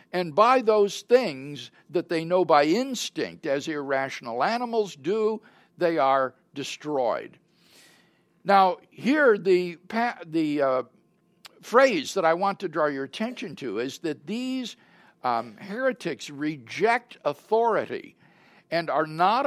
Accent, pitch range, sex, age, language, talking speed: American, 150-225 Hz, male, 60-79, English, 125 wpm